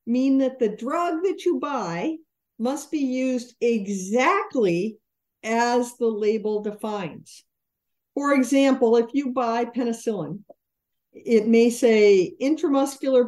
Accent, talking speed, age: American, 115 wpm, 50-69